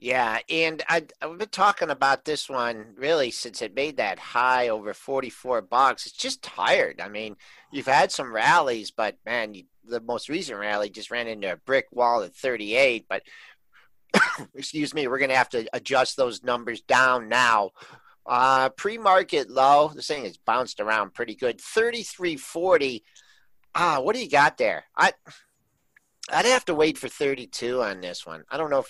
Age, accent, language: 50-69, American, English